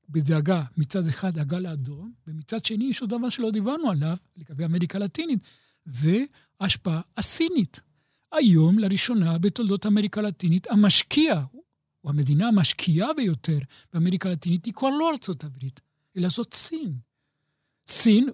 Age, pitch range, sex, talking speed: 60-79, 155-215 Hz, male, 130 wpm